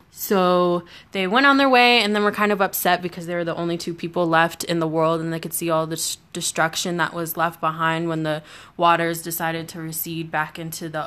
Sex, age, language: female, 20-39, English